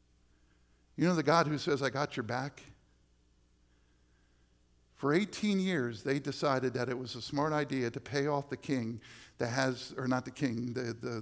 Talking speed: 180 wpm